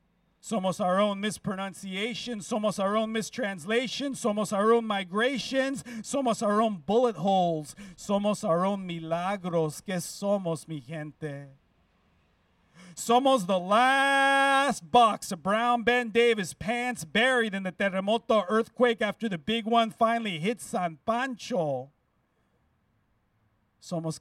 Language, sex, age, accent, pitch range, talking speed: English, male, 50-69, American, 165-220 Hz, 120 wpm